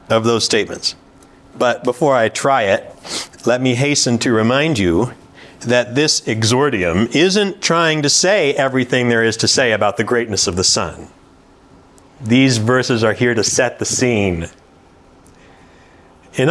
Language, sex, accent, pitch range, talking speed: English, male, American, 120-175 Hz, 150 wpm